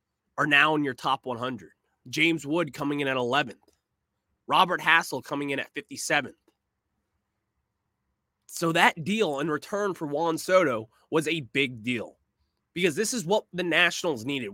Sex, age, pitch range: male, 20-39, 125-165 Hz